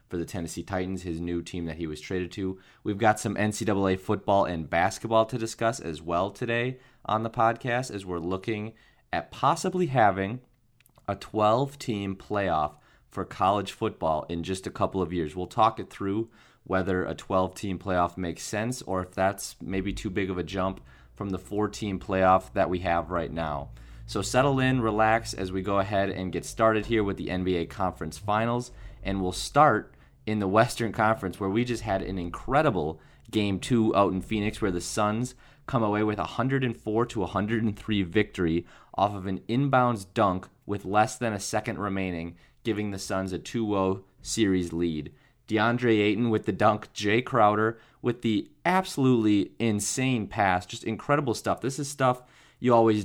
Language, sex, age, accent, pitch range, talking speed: English, male, 30-49, American, 95-115 Hz, 180 wpm